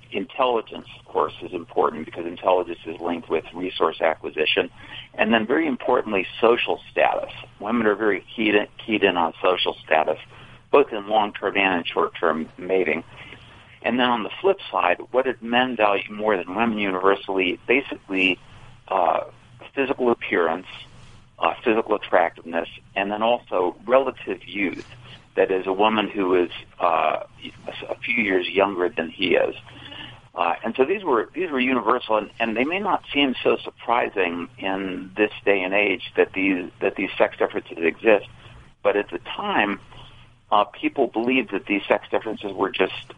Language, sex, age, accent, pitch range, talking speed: English, male, 50-69, American, 90-125 Hz, 160 wpm